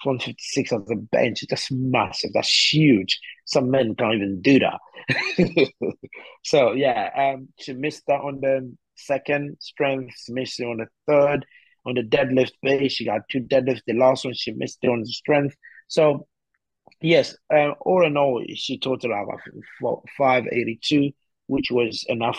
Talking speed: 165 wpm